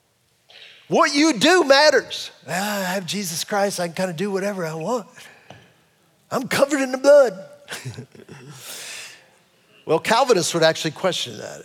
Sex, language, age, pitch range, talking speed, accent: male, English, 40-59, 165-225 Hz, 140 wpm, American